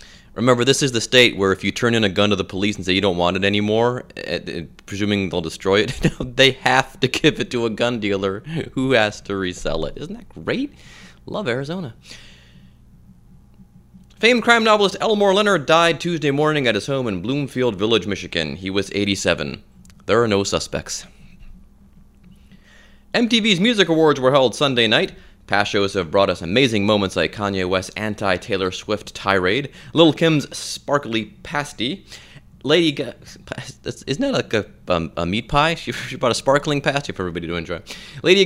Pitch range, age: 100-155 Hz, 30-49